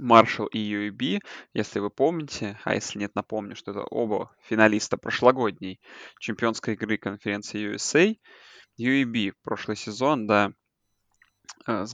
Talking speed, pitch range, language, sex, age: 120 wpm, 105-120 Hz, Russian, male, 20-39